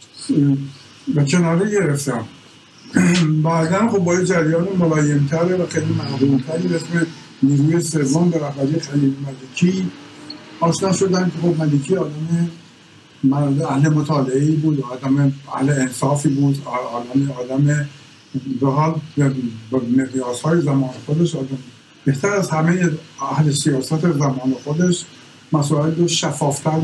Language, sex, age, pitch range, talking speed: Persian, male, 60-79, 140-170 Hz, 105 wpm